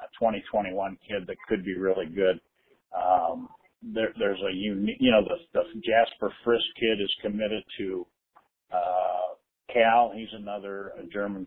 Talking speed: 150 wpm